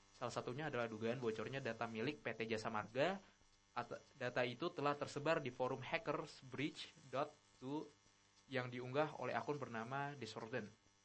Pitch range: 115-155 Hz